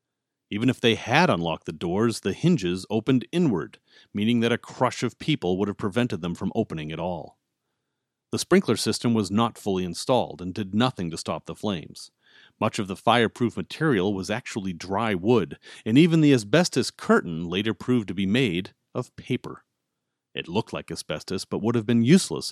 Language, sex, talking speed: English, male, 185 wpm